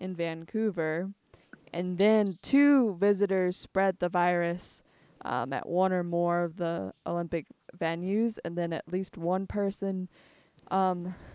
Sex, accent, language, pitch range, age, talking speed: female, American, English, 170-200 Hz, 20-39, 130 wpm